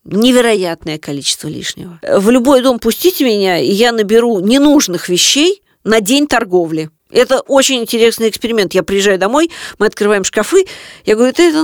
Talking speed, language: 155 wpm, Russian